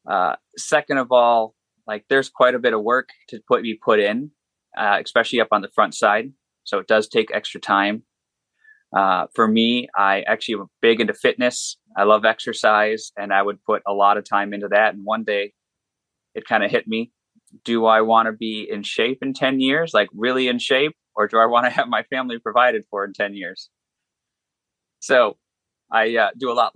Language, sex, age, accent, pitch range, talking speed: English, male, 20-39, American, 105-150 Hz, 205 wpm